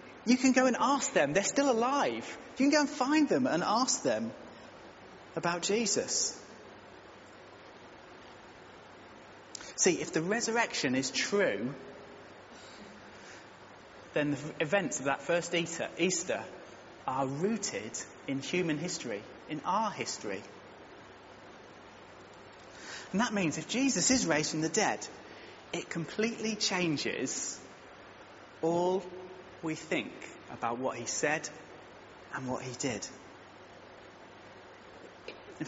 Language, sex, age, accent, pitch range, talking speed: English, male, 30-49, British, 150-210 Hz, 110 wpm